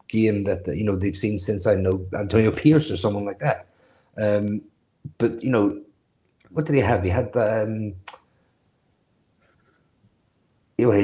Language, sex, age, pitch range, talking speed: English, male, 30-49, 100-120 Hz, 145 wpm